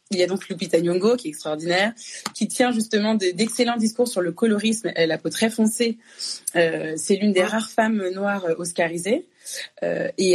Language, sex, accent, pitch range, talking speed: French, female, French, 175-225 Hz, 190 wpm